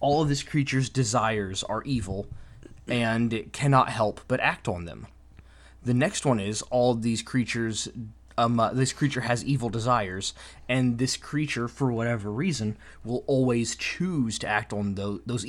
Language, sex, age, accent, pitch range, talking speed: English, male, 20-39, American, 105-130 Hz, 170 wpm